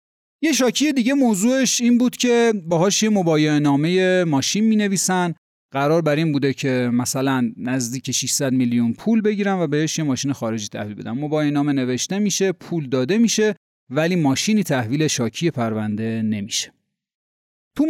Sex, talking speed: male, 160 wpm